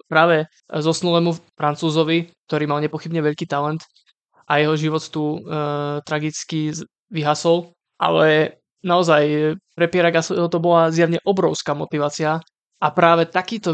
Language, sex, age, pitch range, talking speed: Slovak, male, 20-39, 150-170 Hz, 120 wpm